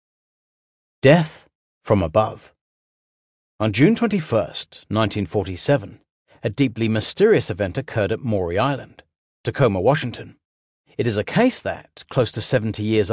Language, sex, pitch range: English, male, 105-130 Hz